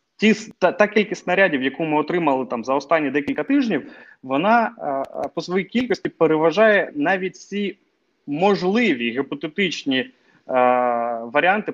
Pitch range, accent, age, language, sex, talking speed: 140-210 Hz, native, 20-39, Ukrainian, male, 125 wpm